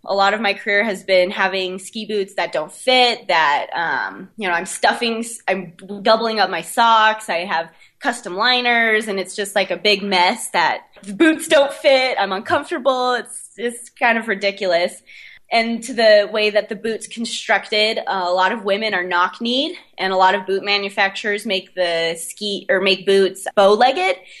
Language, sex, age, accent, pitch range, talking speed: English, female, 20-39, American, 190-230 Hz, 190 wpm